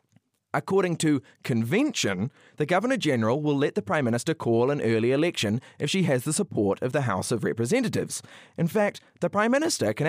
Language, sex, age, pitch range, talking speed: English, male, 30-49, 115-190 Hz, 180 wpm